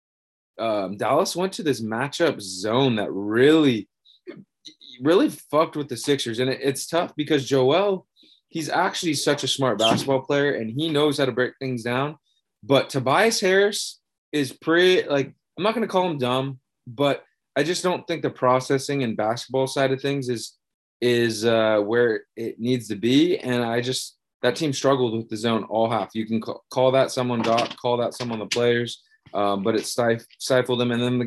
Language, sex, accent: English, male, American